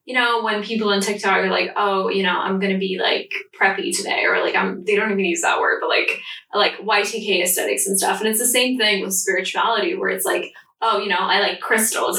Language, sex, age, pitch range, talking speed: English, female, 10-29, 190-245 Hz, 245 wpm